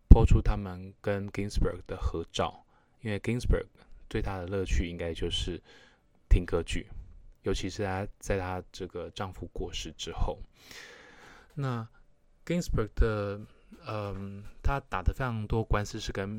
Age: 20-39